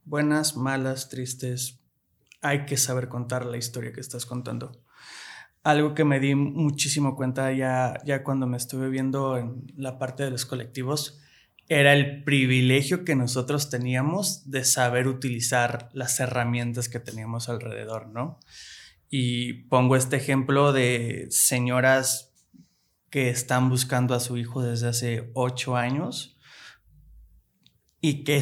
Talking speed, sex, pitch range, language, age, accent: 135 wpm, male, 125-150 Hz, Spanish, 20-39, Mexican